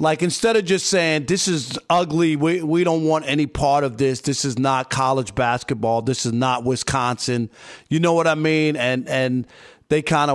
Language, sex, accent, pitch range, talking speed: English, male, American, 130-160 Hz, 195 wpm